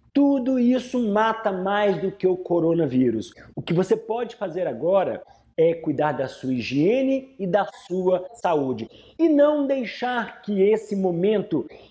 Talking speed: 145 wpm